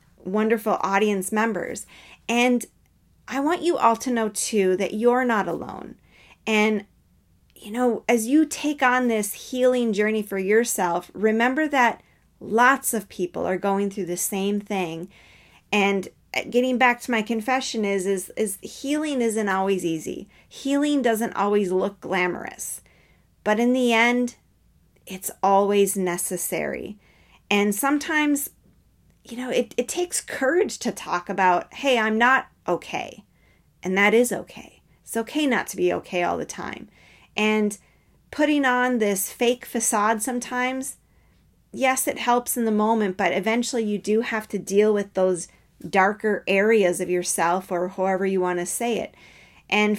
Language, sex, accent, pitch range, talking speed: English, female, American, 195-245 Hz, 150 wpm